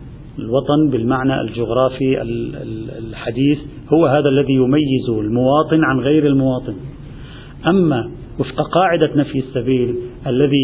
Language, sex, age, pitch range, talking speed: Arabic, male, 40-59, 125-150 Hz, 100 wpm